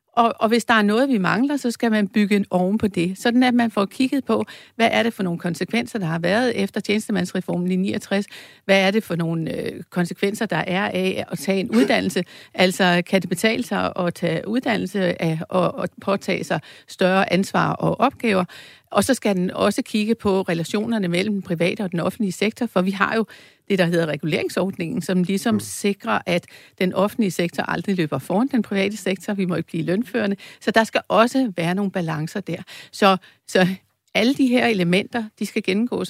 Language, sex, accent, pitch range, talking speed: Danish, female, native, 180-215 Hz, 200 wpm